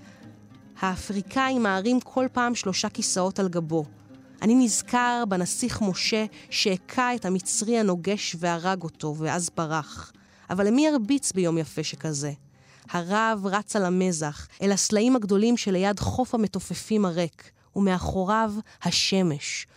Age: 30-49